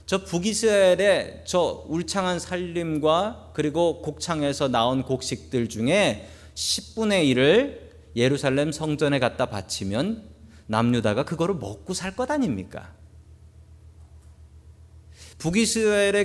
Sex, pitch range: male, 110-170 Hz